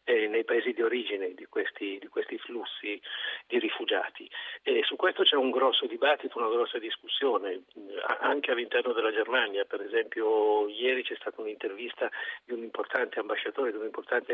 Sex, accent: male, native